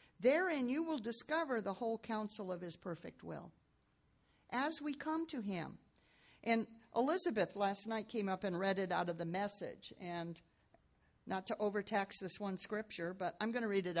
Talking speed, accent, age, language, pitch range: 180 wpm, American, 50-69, English, 200-275 Hz